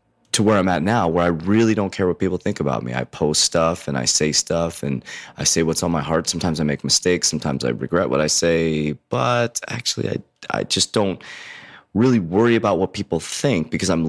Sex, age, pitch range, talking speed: male, 30-49, 75-100 Hz, 225 wpm